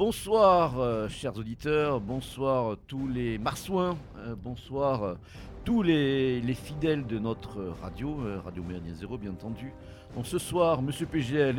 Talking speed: 160 wpm